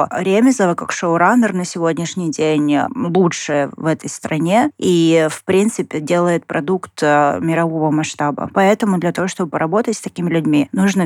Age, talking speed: 20-39, 140 wpm